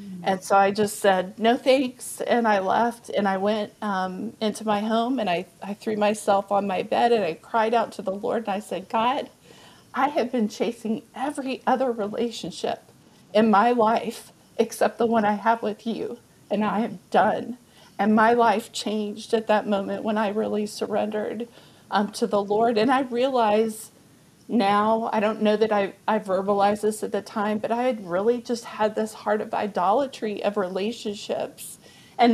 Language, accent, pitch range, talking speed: English, American, 205-230 Hz, 185 wpm